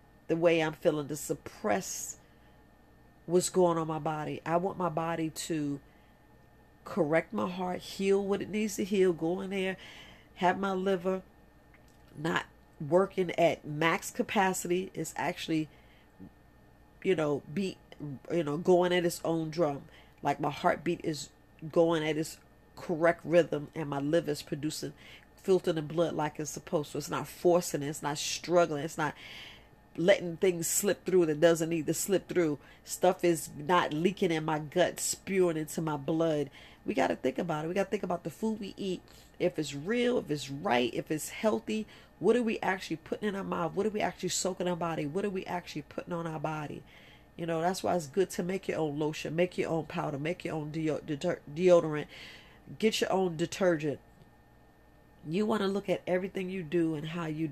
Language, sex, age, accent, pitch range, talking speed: English, female, 40-59, American, 155-185 Hz, 190 wpm